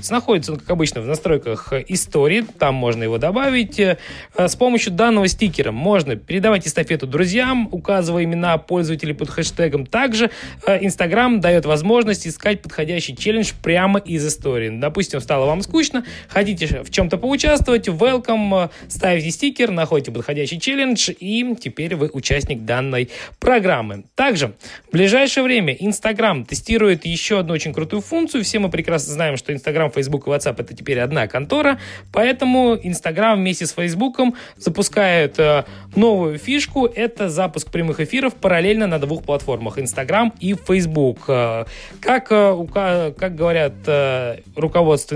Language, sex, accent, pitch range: Russian, male, native, 150-215 Hz